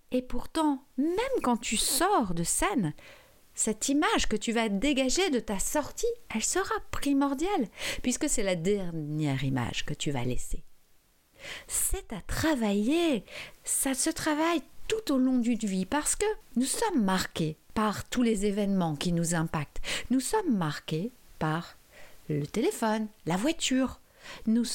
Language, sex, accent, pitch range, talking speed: French, female, French, 190-280 Hz, 150 wpm